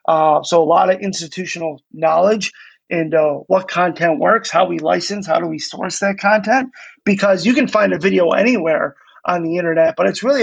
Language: English